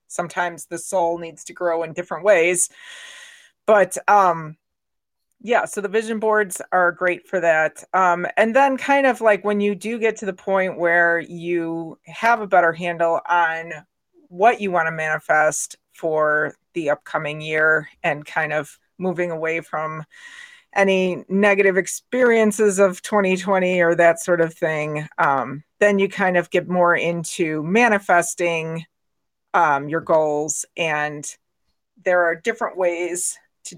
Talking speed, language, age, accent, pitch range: 145 wpm, English, 40-59, American, 165-215 Hz